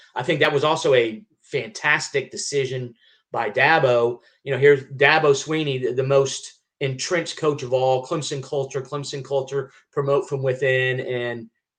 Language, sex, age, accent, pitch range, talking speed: English, male, 30-49, American, 120-140 Hz, 155 wpm